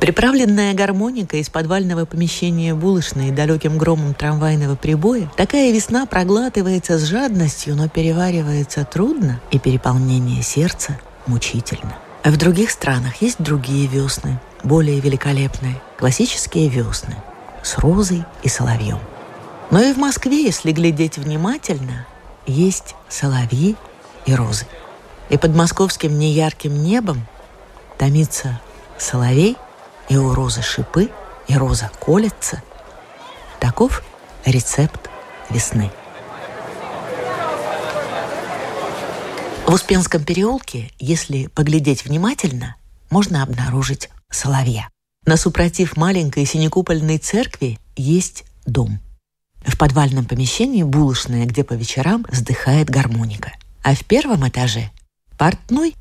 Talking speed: 105 wpm